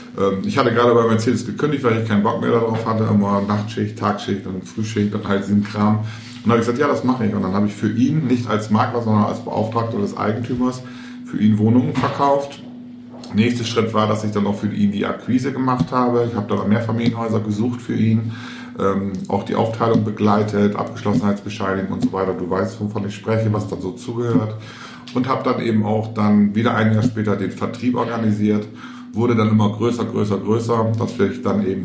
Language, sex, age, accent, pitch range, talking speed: German, male, 50-69, German, 100-120 Hz, 205 wpm